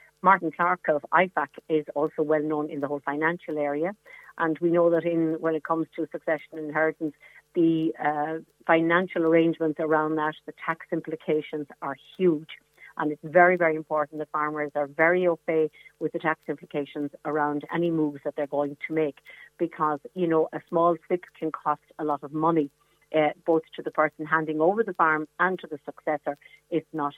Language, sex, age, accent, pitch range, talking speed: English, female, 50-69, Irish, 150-165 Hz, 185 wpm